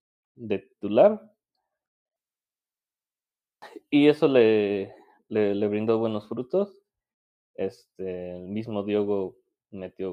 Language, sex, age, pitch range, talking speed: Spanish, male, 20-39, 105-125 Hz, 90 wpm